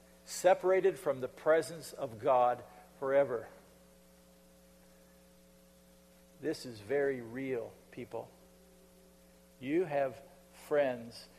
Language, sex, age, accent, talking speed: English, male, 50-69, American, 80 wpm